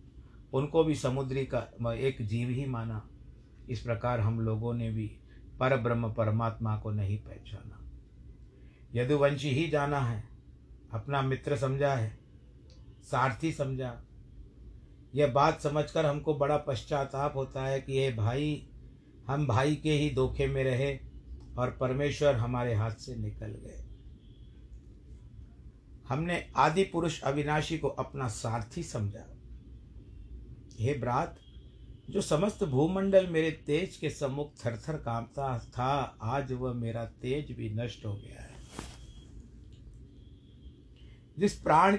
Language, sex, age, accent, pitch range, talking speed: Hindi, male, 50-69, native, 115-140 Hz, 120 wpm